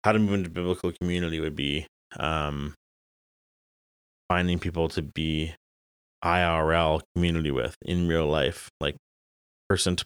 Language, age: English, 30-49